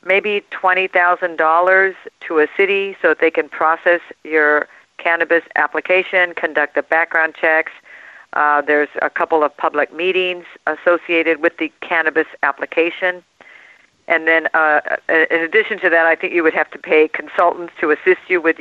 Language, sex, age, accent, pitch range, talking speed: English, female, 50-69, American, 155-180 Hz, 155 wpm